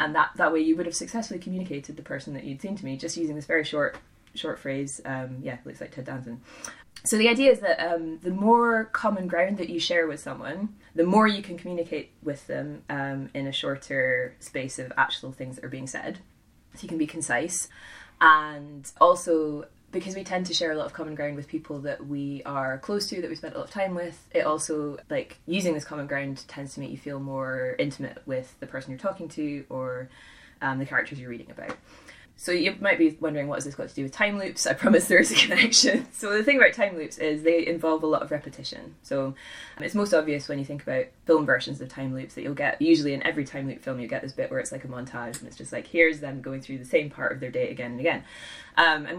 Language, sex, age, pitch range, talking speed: English, female, 20-39, 135-175 Hz, 250 wpm